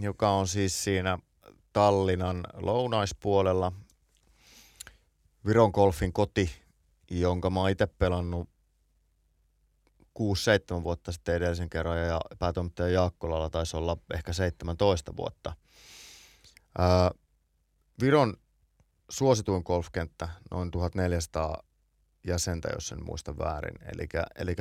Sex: male